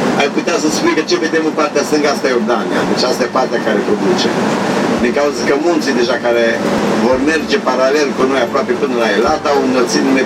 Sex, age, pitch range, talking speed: male, 50-69, 135-170 Hz, 210 wpm